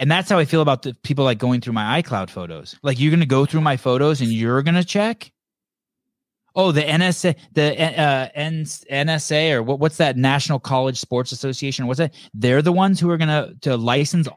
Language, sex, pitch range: English, male, 120-170 Hz